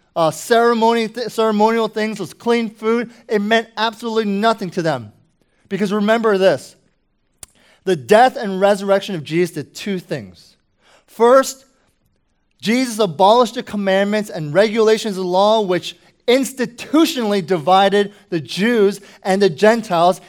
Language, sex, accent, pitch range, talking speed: English, male, American, 180-225 Hz, 125 wpm